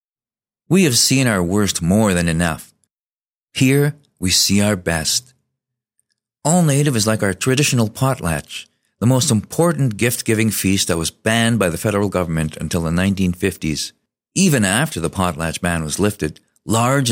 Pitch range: 90-120 Hz